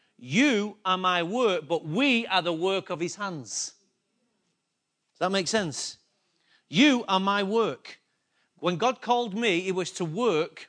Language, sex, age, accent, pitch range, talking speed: English, male, 40-59, British, 175-230 Hz, 155 wpm